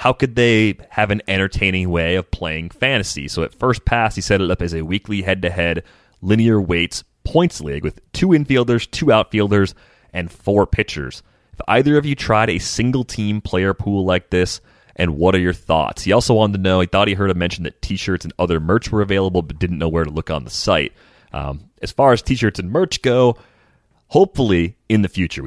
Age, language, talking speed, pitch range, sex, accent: 30-49, English, 210 wpm, 85-115 Hz, male, American